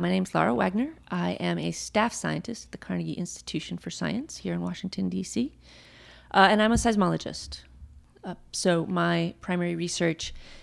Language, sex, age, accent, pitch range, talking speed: English, female, 30-49, American, 165-205 Hz, 160 wpm